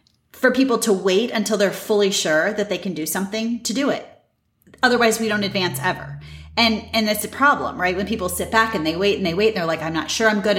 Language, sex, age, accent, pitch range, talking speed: English, female, 30-49, American, 175-230 Hz, 250 wpm